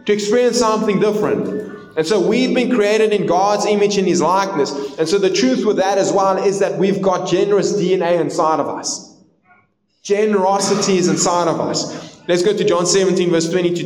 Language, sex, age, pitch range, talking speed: English, male, 20-39, 165-210 Hz, 185 wpm